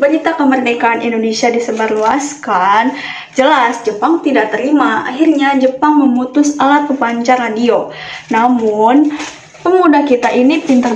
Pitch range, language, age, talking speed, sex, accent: 230-295 Hz, Indonesian, 10-29, 110 wpm, female, native